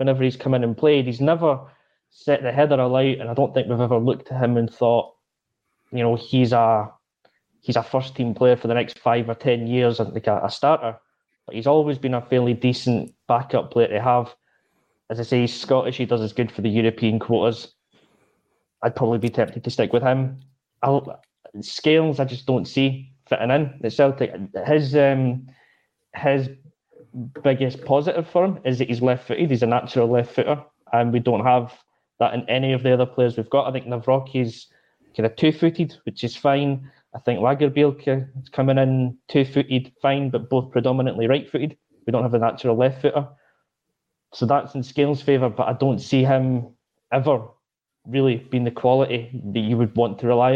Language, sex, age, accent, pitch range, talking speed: English, male, 20-39, British, 120-135 Hz, 190 wpm